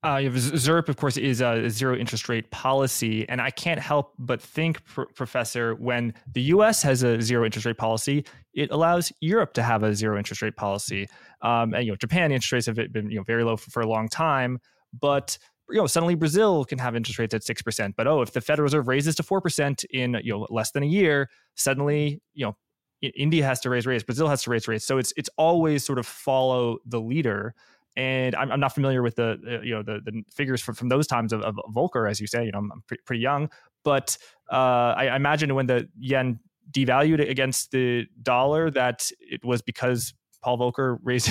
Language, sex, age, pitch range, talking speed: English, male, 20-39, 115-140 Hz, 220 wpm